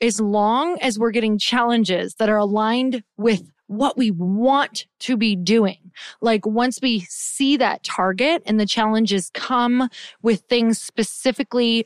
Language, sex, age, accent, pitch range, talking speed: English, female, 30-49, American, 190-245 Hz, 145 wpm